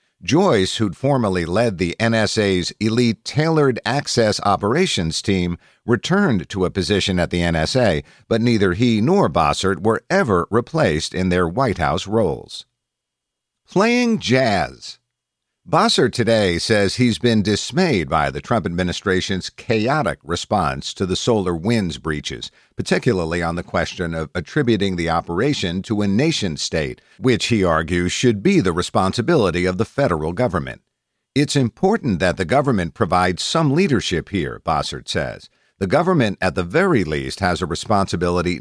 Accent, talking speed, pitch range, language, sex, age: American, 145 wpm, 90-115 Hz, English, male, 50-69